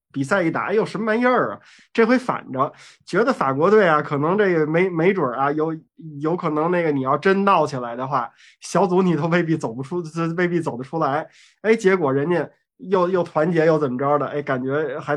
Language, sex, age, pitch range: Chinese, male, 20-39, 145-200 Hz